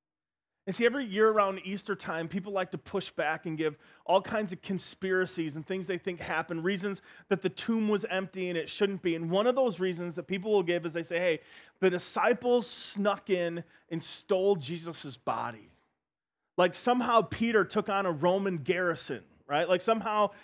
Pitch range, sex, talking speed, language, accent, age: 165-205 Hz, male, 190 wpm, English, American, 30-49